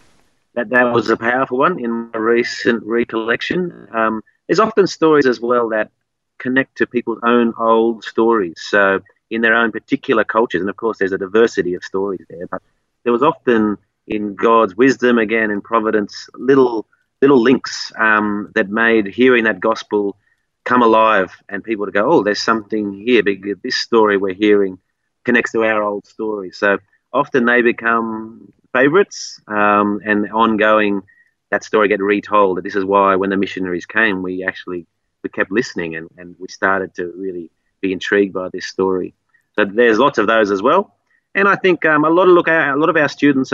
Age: 30-49